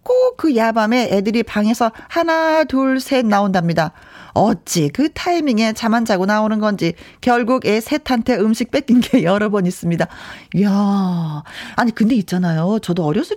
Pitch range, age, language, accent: 190-260 Hz, 40-59, Korean, native